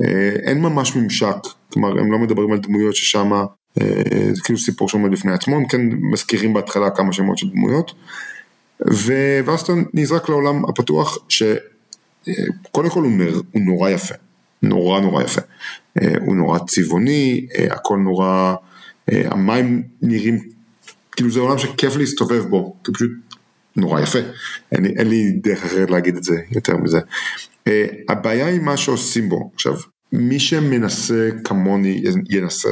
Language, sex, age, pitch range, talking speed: Hebrew, male, 40-59, 100-125 Hz, 145 wpm